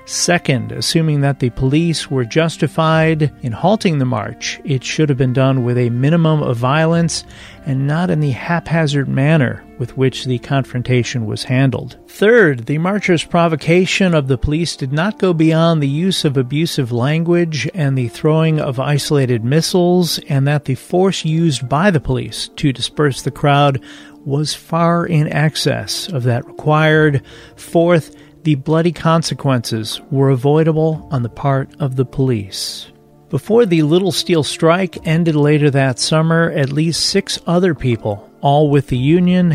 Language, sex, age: English, male, 40-59